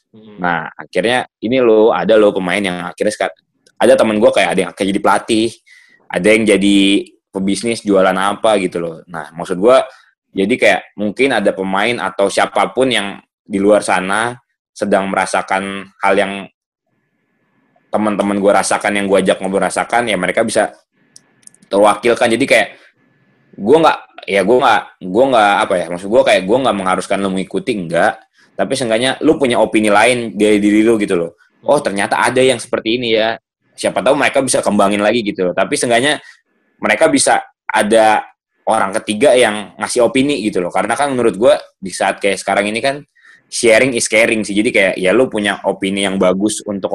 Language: Indonesian